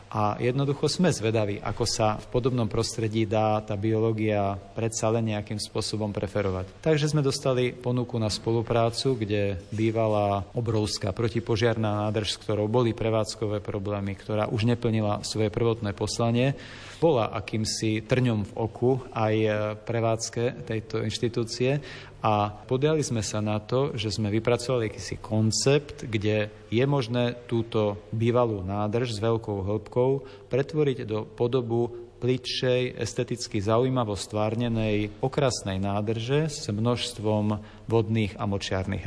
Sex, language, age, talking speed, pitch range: male, Slovak, 40-59, 125 wpm, 105-125 Hz